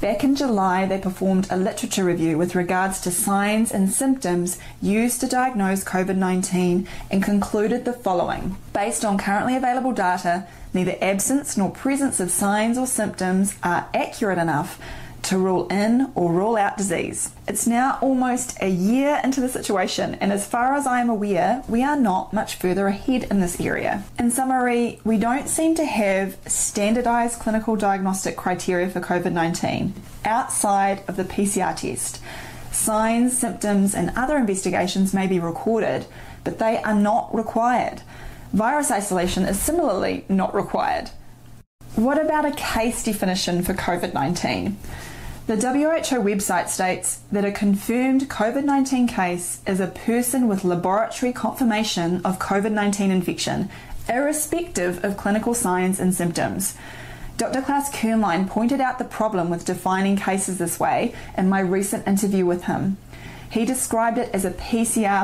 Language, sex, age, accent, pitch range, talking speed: English, female, 20-39, Australian, 185-240 Hz, 150 wpm